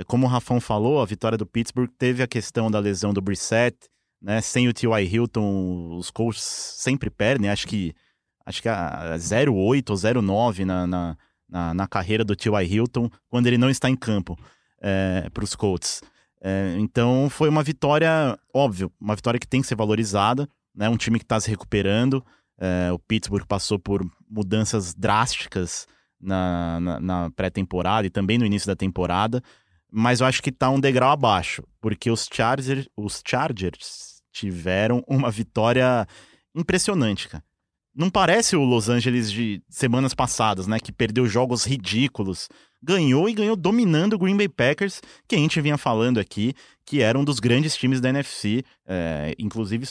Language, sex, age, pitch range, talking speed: Portuguese, male, 20-39, 100-130 Hz, 170 wpm